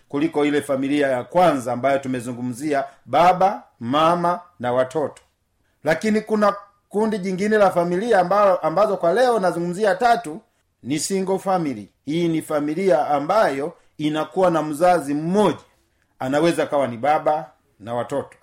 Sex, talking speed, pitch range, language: male, 130 wpm, 145-190 Hz, Swahili